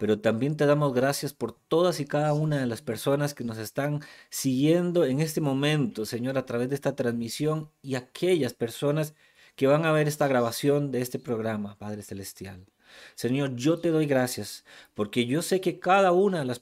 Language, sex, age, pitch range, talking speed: Spanish, male, 40-59, 125-170 Hz, 190 wpm